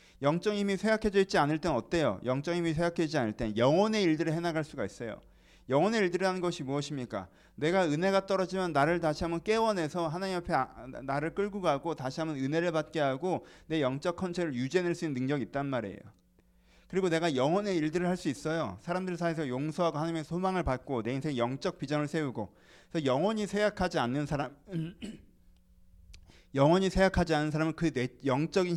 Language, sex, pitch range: Korean, male, 115-180 Hz